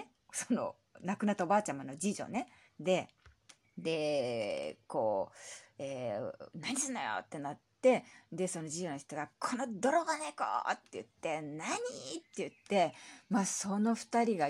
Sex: female